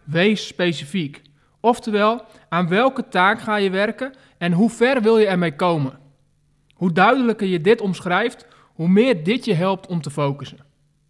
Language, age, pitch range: Dutch, 20-39, 165-220 Hz